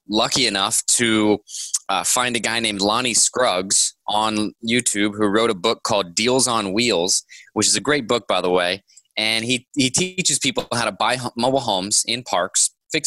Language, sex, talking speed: English, male, 190 wpm